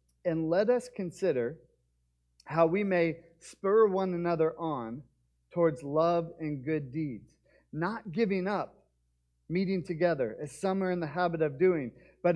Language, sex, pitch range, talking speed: English, male, 150-200 Hz, 145 wpm